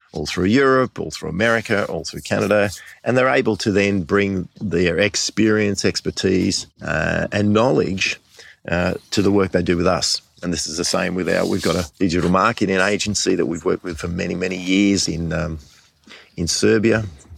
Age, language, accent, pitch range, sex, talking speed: 50-69, English, Australian, 90-110 Hz, male, 185 wpm